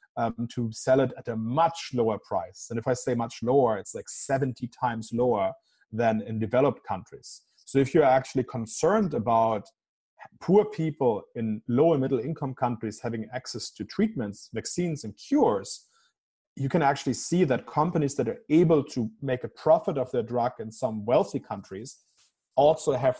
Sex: male